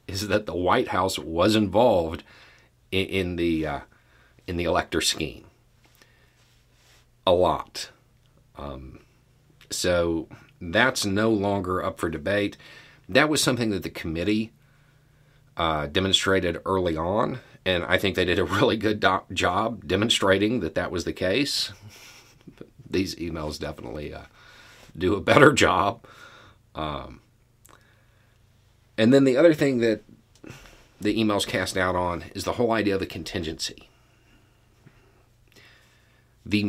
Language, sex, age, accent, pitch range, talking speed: English, male, 40-59, American, 90-115 Hz, 130 wpm